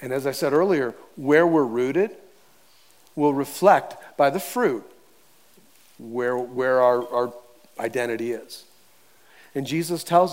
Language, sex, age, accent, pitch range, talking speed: English, male, 40-59, American, 150-210 Hz, 130 wpm